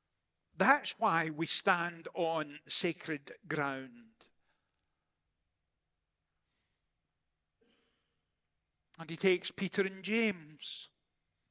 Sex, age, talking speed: male, 60-79, 70 wpm